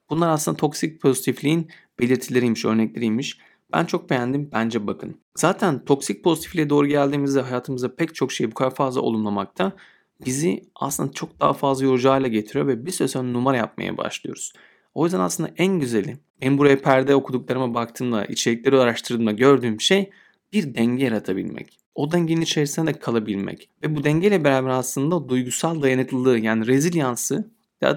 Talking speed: 150 wpm